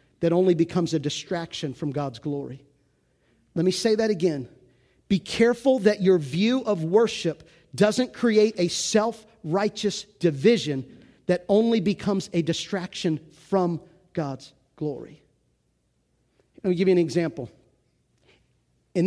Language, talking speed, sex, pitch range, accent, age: English, 125 wpm, male, 155-205 Hz, American, 40-59